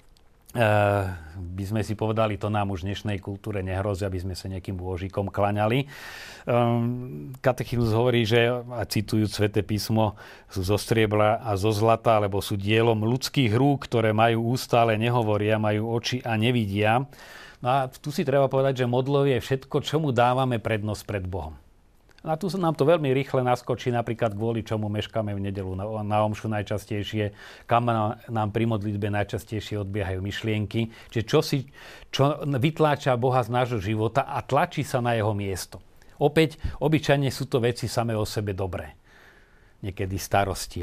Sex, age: male, 40-59